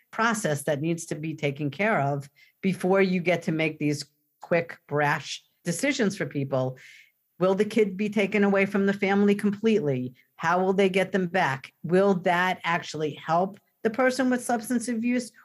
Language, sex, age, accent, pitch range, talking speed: English, female, 50-69, American, 150-195 Hz, 170 wpm